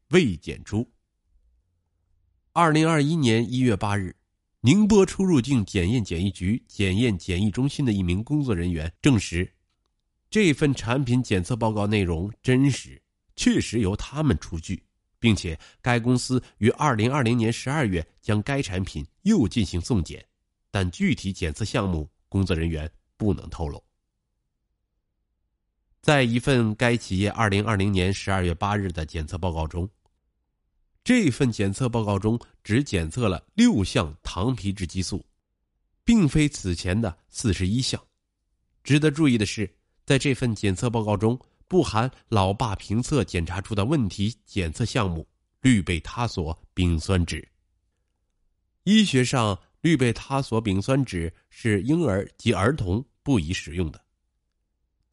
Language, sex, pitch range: Chinese, male, 90-125 Hz